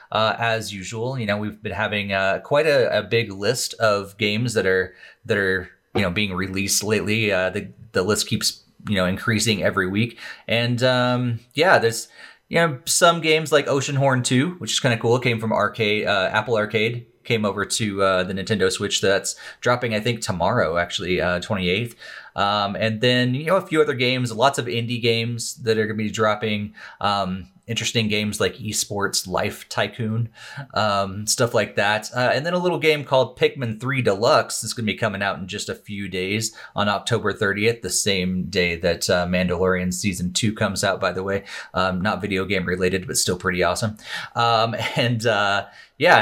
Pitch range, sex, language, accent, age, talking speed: 100-120 Hz, male, English, American, 30-49, 200 wpm